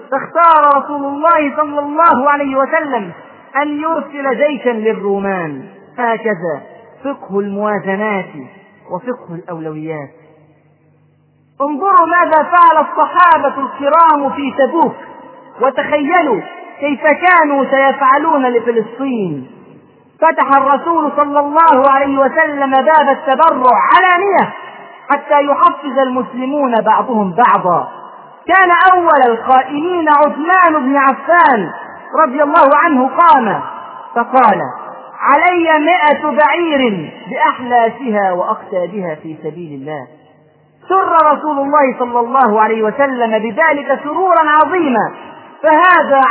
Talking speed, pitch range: 95 wpm, 210-305 Hz